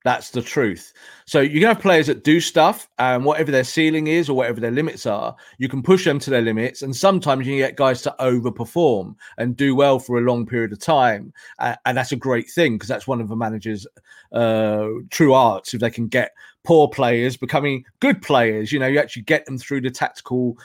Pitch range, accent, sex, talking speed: 125-155 Hz, British, male, 220 wpm